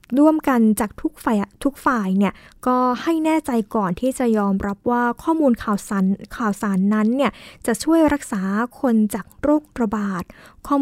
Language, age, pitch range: Thai, 20-39, 210-265 Hz